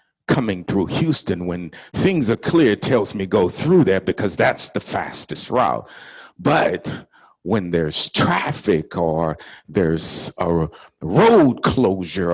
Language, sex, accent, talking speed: English, male, American, 125 wpm